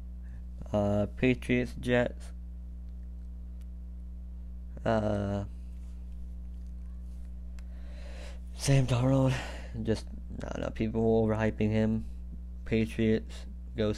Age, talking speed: 20-39, 70 wpm